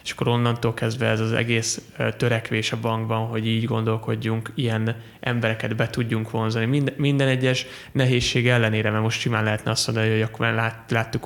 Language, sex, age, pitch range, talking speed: Hungarian, male, 20-39, 110-125 Hz, 170 wpm